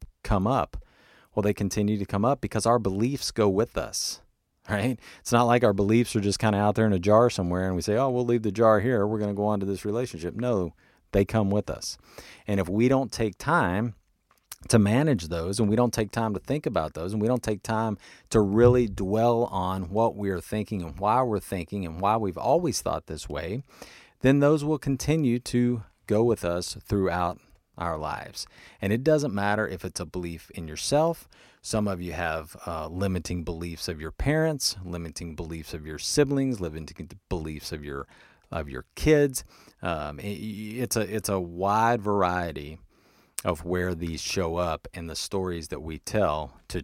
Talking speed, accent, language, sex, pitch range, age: 200 wpm, American, English, male, 90-115 Hz, 40-59